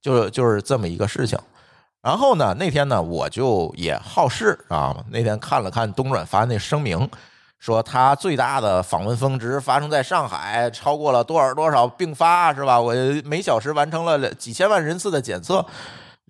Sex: male